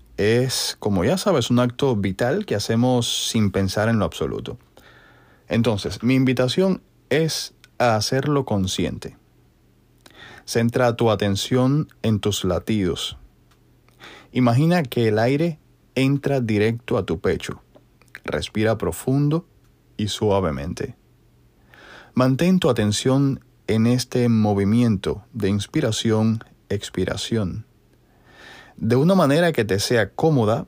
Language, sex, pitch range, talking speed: Spanish, male, 100-125 Hz, 110 wpm